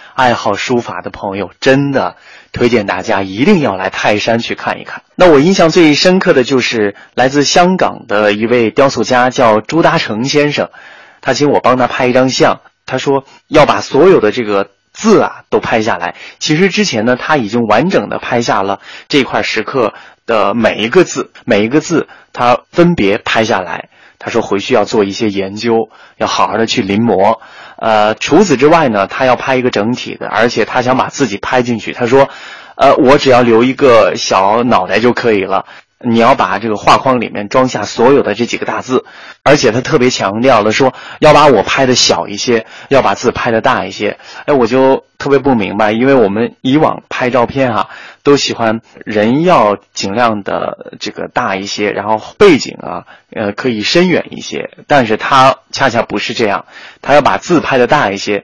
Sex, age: male, 20-39